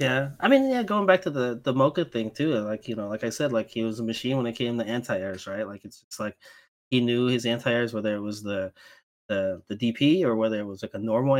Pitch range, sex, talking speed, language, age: 110-135 Hz, male, 280 wpm, English, 20-39